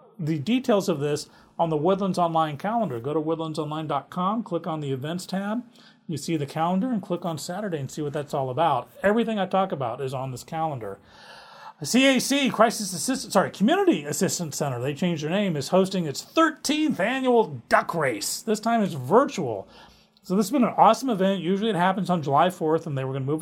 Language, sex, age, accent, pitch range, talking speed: English, male, 40-59, American, 150-205 Hz, 205 wpm